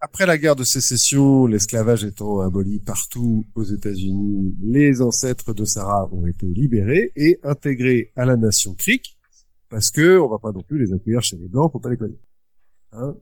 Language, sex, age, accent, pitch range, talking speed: French, male, 50-69, French, 105-150 Hz, 185 wpm